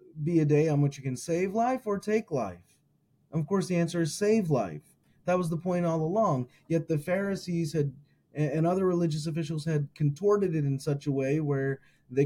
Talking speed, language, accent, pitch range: 210 wpm, English, American, 145-190 Hz